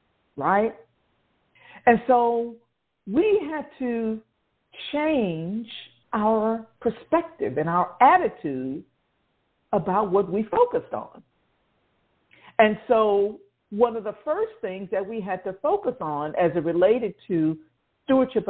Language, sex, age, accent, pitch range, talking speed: English, female, 50-69, American, 200-265 Hz, 115 wpm